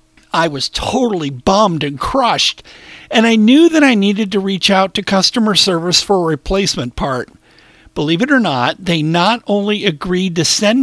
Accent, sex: American, male